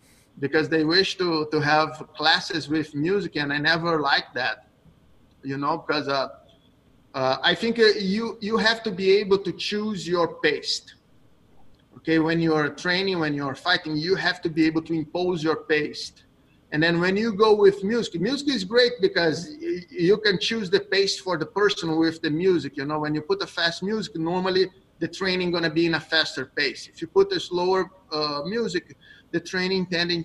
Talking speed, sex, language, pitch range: 200 wpm, male, English, 150-190 Hz